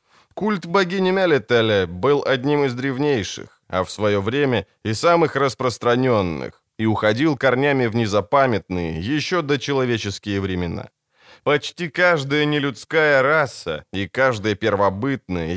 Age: 20-39